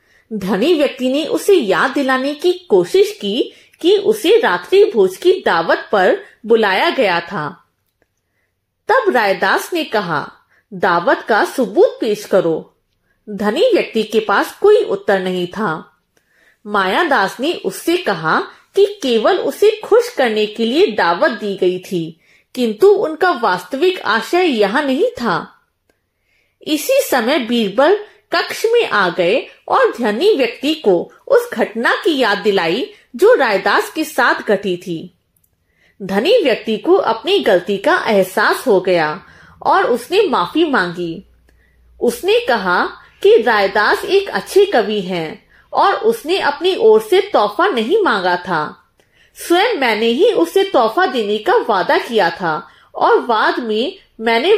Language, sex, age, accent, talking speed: Hindi, female, 30-49, native, 135 wpm